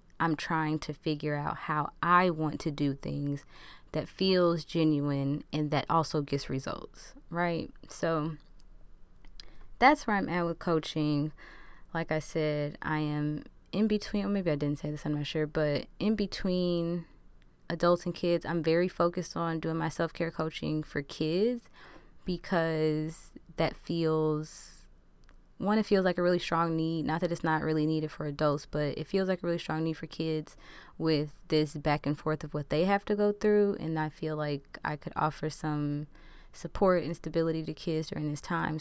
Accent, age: American, 20-39